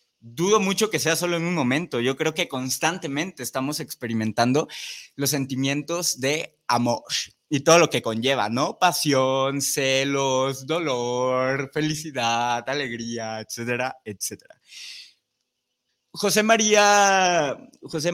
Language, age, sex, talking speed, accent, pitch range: Spanish, 20-39, male, 115 wpm, Mexican, 130-165 Hz